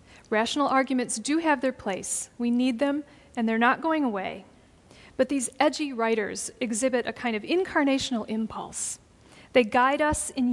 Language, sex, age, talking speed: English, female, 40-59, 160 wpm